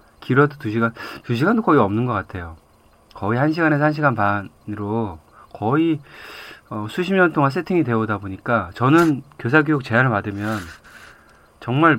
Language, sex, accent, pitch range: Korean, male, native, 110-150 Hz